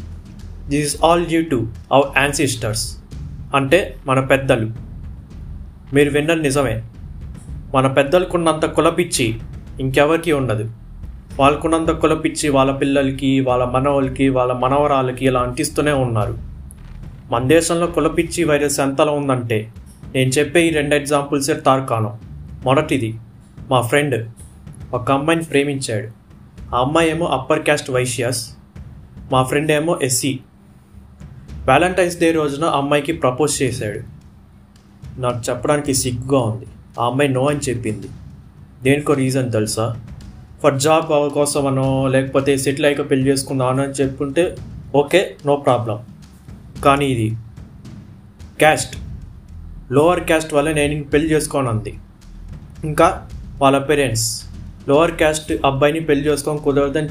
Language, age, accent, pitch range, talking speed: Telugu, 30-49, native, 115-145 Hz, 110 wpm